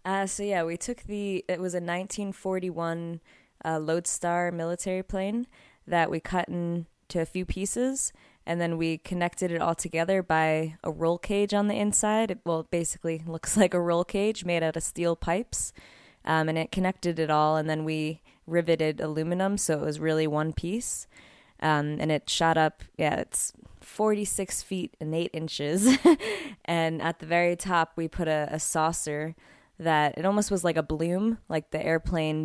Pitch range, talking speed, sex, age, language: 160-190 Hz, 180 wpm, female, 20-39, English